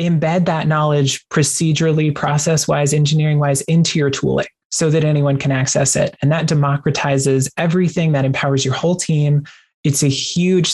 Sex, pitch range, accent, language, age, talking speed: male, 140-165 Hz, American, English, 20-39, 150 wpm